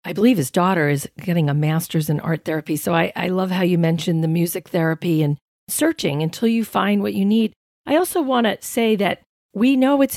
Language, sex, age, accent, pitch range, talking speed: English, female, 40-59, American, 160-200 Hz, 225 wpm